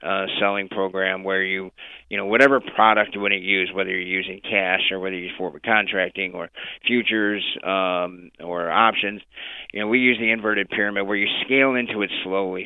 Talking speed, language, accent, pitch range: 195 wpm, English, American, 95-110 Hz